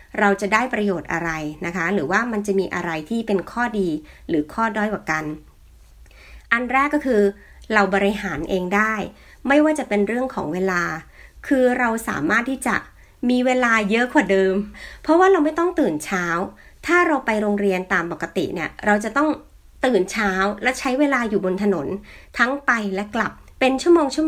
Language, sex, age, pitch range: Thai, female, 60-79, 180-260 Hz